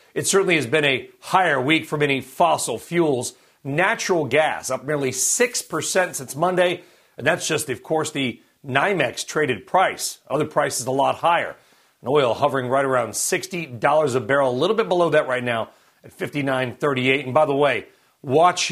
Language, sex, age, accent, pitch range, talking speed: English, male, 40-59, American, 135-190 Hz, 170 wpm